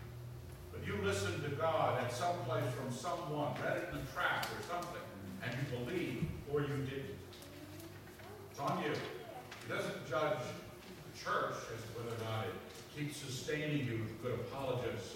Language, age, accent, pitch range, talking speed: English, 50-69, American, 100-135 Hz, 170 wpm